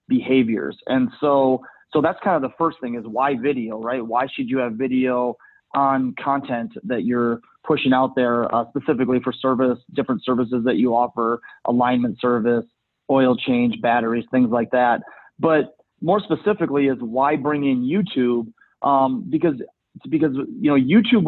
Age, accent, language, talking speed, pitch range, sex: 30-49, American, English, 160 wpm, 125-150 Hz, male